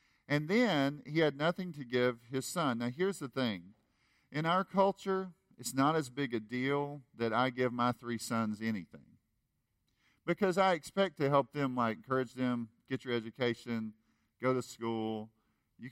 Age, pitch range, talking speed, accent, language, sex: 50-69, 110-135 Hz, 170 wpm, American, English, male